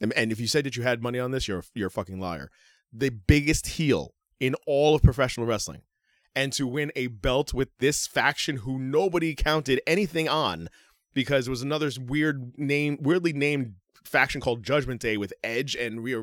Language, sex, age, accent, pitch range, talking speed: English, male, 30-49, American, 105-140 Hz, 190 wpm